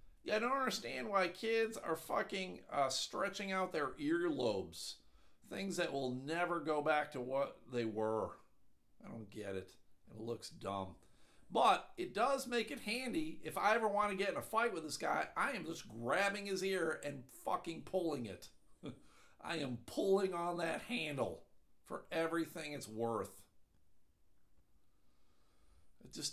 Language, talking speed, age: English, 155 wpm, 50-69